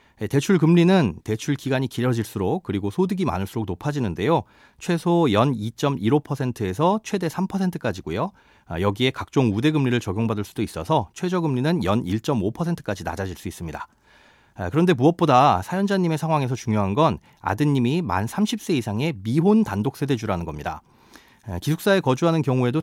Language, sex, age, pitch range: Korean, male, 30-49, 105-170 Hz